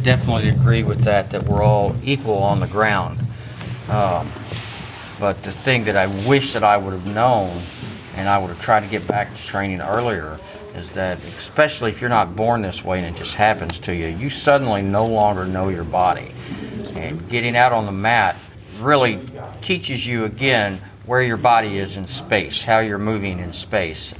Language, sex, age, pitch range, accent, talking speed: English, male, 50-69, 95-125 Hz, American, 190 wpm